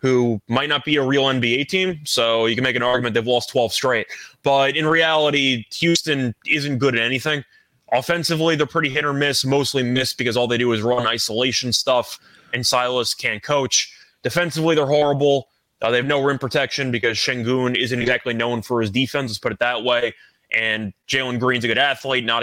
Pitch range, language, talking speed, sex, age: 125-150 Hz, English, 200 wpm, male, 20-39